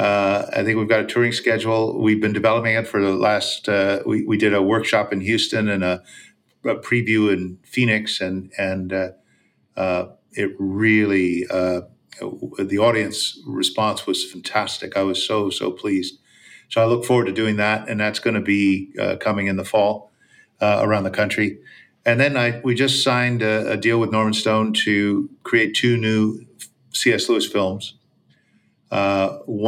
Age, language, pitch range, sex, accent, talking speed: 50-69, English, 95-110 Hz, male, American, 175 wpm